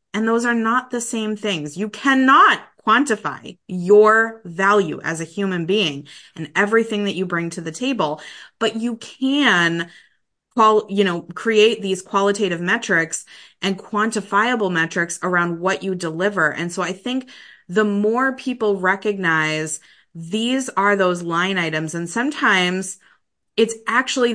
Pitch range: 175-220 Hz